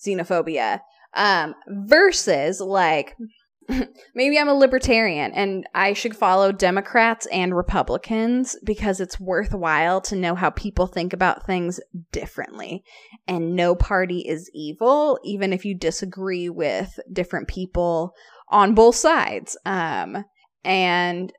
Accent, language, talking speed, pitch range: American, English, 120 wpm, 185-235 Hz